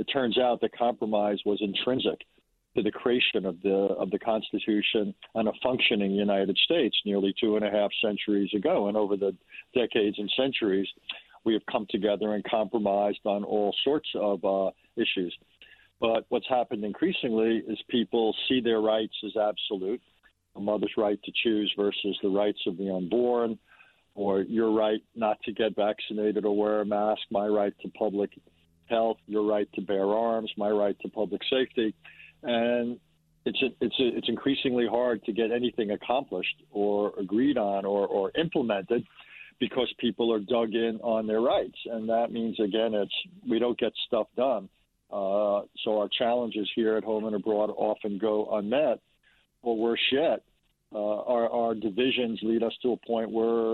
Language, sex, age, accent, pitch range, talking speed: English, male, 50-69, American, 100-115 Hz, 170 wpm